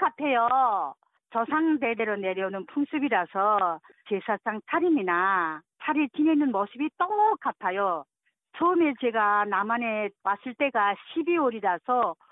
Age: 40-59